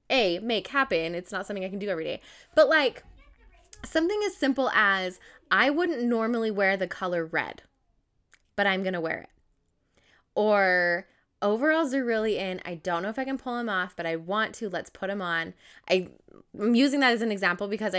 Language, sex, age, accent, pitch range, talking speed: English, female, 10-29, American, 185-275 Hz, 200 wpm